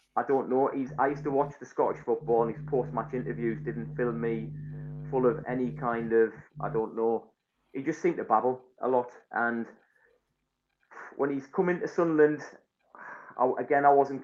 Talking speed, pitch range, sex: 180 wpm, 120-150 Hz, male